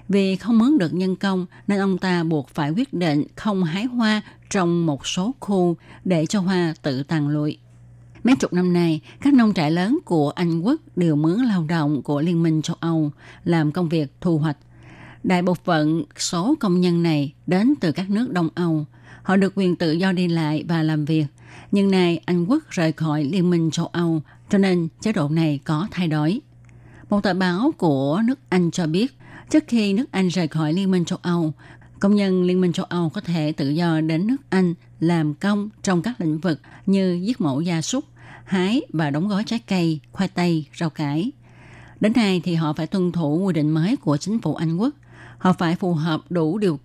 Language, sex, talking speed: Vietnamese, female, 210 wpm